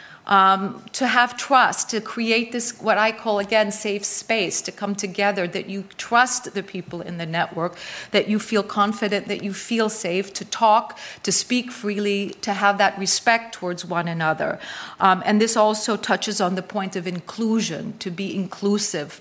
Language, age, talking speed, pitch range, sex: German, 40-59, 180 wpm, 180-215 Hz, female